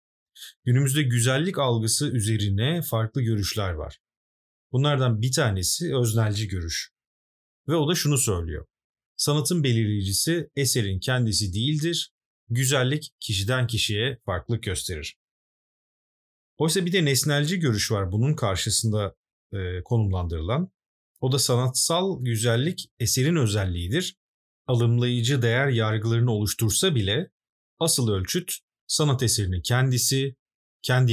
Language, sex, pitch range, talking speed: Turkish, male, 105-135 Hz, 105 wpm